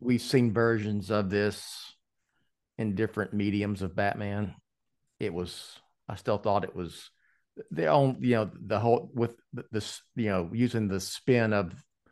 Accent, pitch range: American, 95-110 Hz